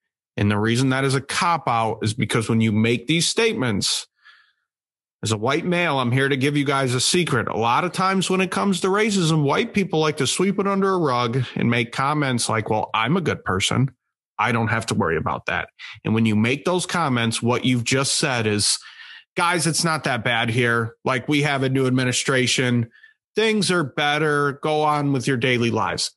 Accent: American